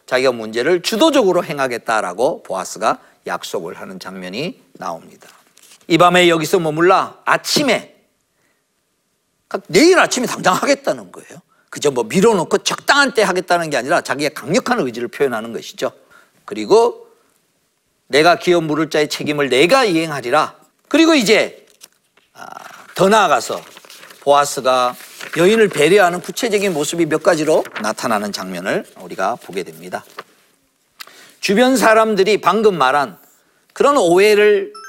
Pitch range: 150-245 Hz